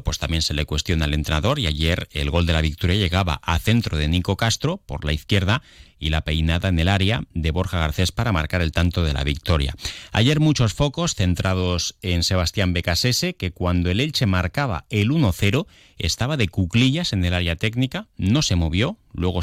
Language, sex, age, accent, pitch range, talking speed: Spanish, male, 30-49, Spanish, 80-110 Hz, 200 wpm